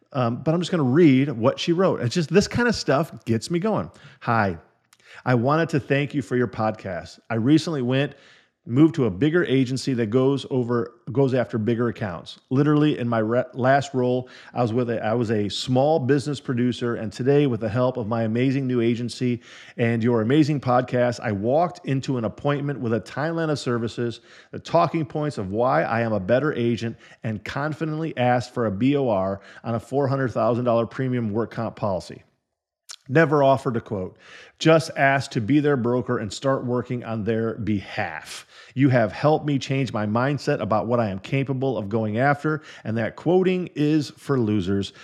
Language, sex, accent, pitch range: English, male, American, 115-145 Hz